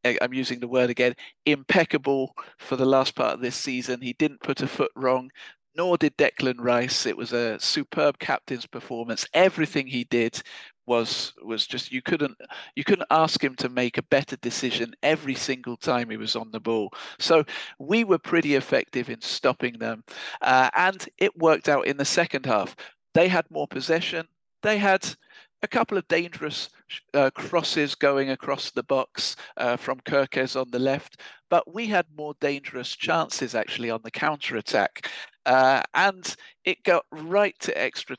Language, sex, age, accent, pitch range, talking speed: English, male, 50-69, British, 125-155 Hz, 170 wpm